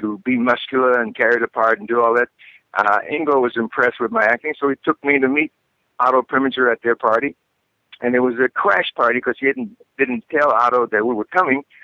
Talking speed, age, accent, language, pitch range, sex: 225 wpm, 50-69, American, English, 115-130 Hz, male